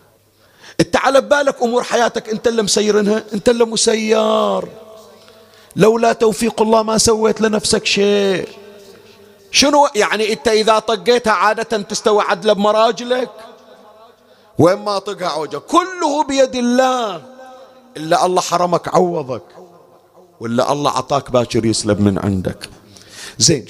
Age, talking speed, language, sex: 40-59, 110 wpm, Arabic, male